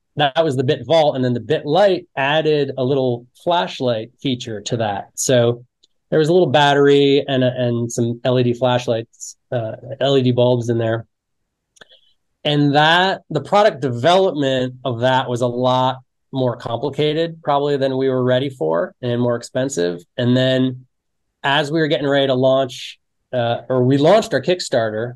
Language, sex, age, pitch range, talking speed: English, male, 20-39, 120-140 Hz, 165 wpm